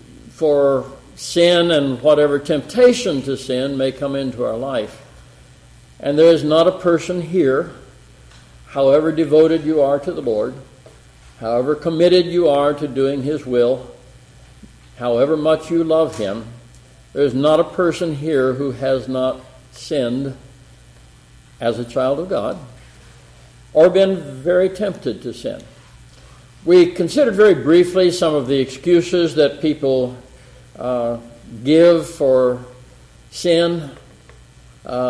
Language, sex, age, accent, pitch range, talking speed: English, male, 60-79, American, 125-160 Hz, 130 wpm